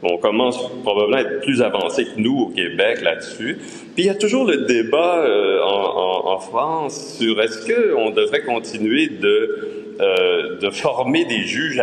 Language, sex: French, male